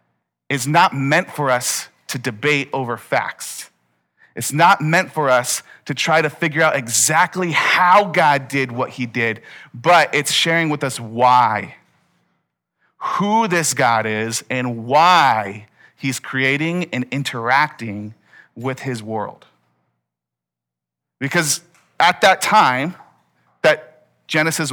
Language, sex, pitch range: English, male, 120-170 Hz